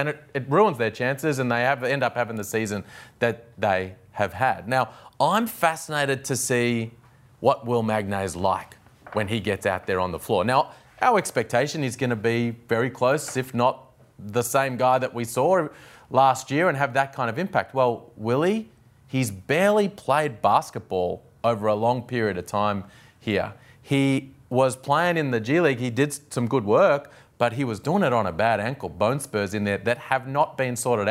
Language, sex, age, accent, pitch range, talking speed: English, male, 30-49, Australian, 115-145 Hz, 200 wpm